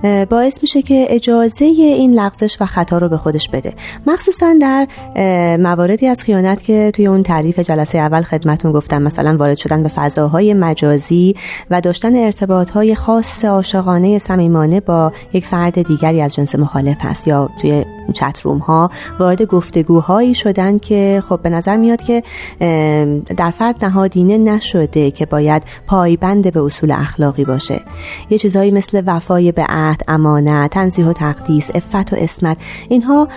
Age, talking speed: 30-49, 150 wpm